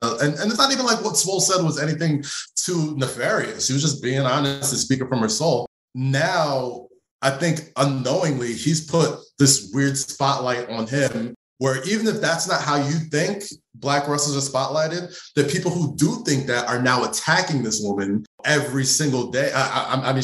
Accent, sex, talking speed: American, male, 190 wpm